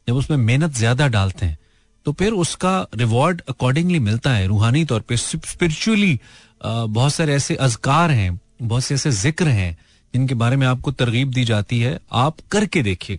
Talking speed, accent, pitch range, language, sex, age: 175 wpm, native, 105-140 Hz, Hindi, male, 30-49